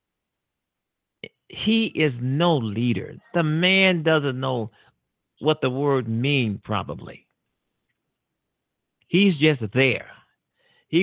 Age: 50-69